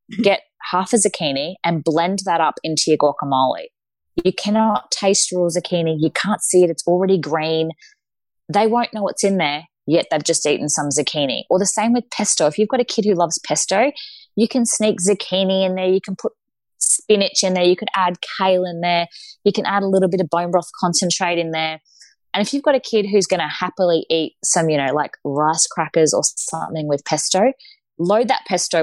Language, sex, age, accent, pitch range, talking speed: English, female, 20-39, Australian, 155-200 Hz, 210 wpm